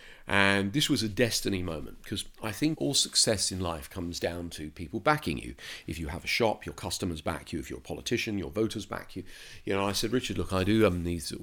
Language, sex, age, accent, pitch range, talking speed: English, male, 40-59, British, 90-105 Hz, 240 wpm